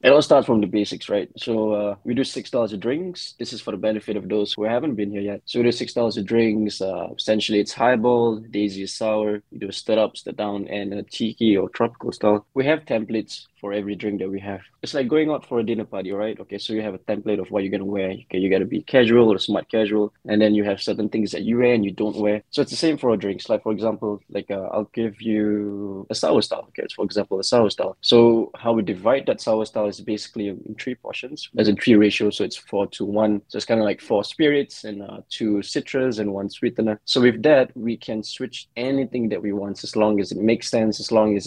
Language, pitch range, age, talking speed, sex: English, 105-115 Hz, 20-39, 265 wpm, male